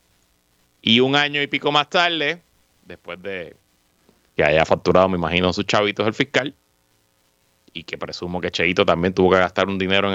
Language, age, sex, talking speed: Spanish, 30-49, male, 175 wpm